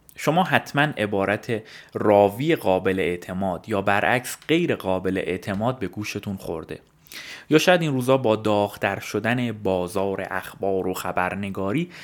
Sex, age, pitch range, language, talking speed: male, 30-49, 95-135 Hz, Persian, 125 wpm